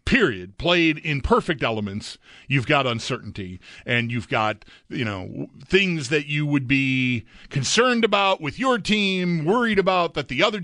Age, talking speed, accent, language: 40-59, 160 wpm, American, English